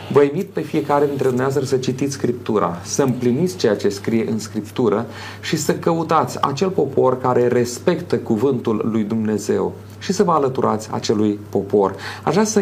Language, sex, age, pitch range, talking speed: Romanian, male, 30-49, 110-135 Hz, 155 wpm